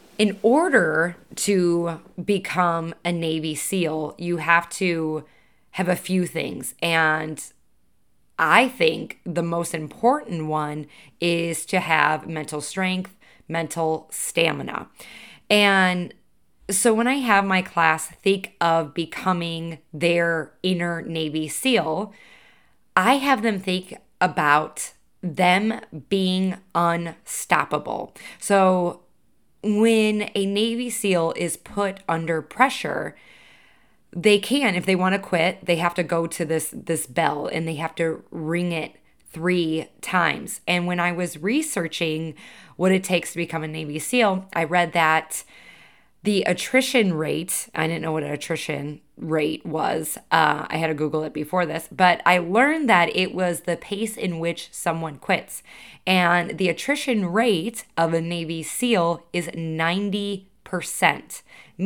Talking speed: 135 wpm